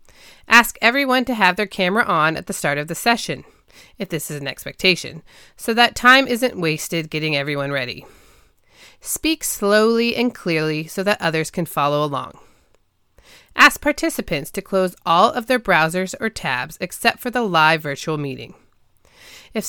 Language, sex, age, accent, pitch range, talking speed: English, female, 30-49, American, 155-235 Hz, 160 wpm